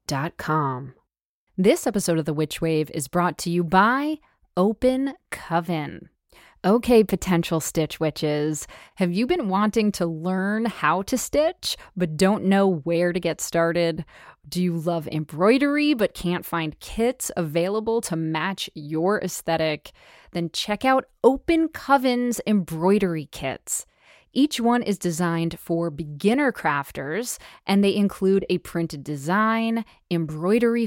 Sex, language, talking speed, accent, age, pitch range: female, English, 135 wpm, American, 20-39, 165-225 Hz